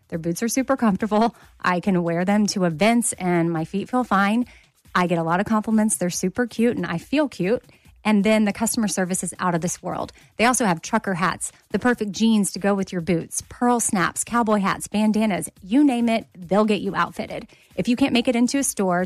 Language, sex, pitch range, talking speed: English, female, 180-235 Hz, 225 wpm